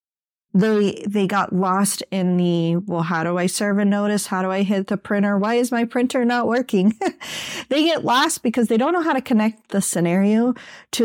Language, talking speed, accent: English, 205 wpm, American